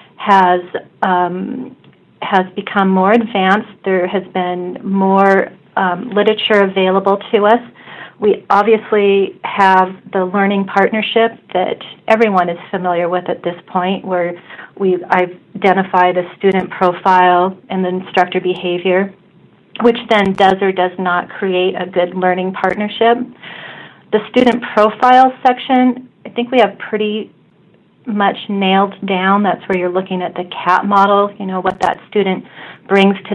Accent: American